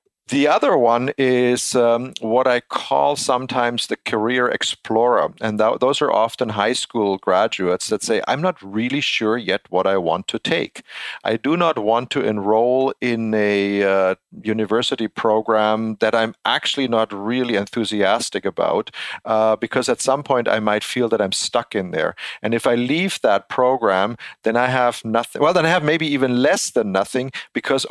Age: 40-59